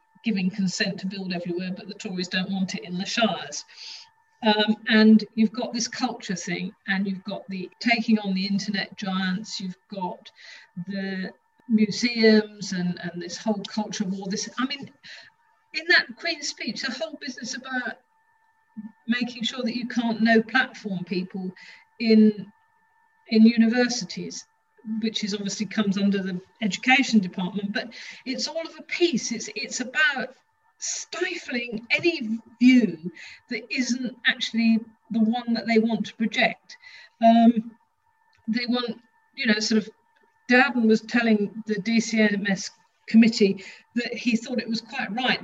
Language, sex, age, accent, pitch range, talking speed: English, female, 50-69, British, 200-250 Hz, 150 wpm